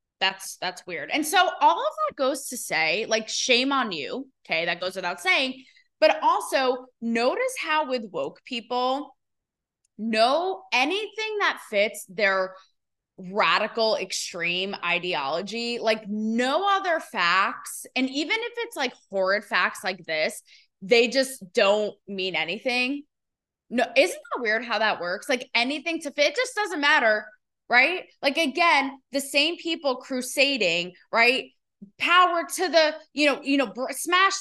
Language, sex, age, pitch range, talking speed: English, female, 20-39, 205-300 Hz, 150 wpm